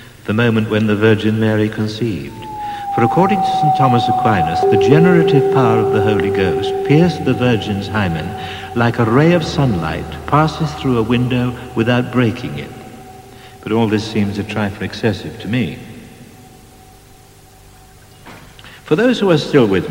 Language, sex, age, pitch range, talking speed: English, male, 60-79, 105-150 Hz, 155 wpm